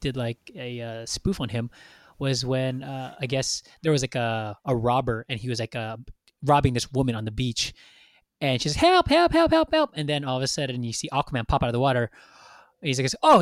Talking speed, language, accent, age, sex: 235 wpm, English, American, 20-39, male